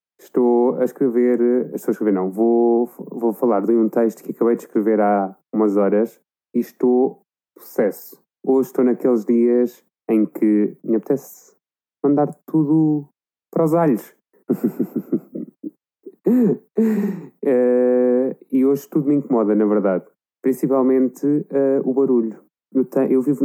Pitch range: 115-135 Hz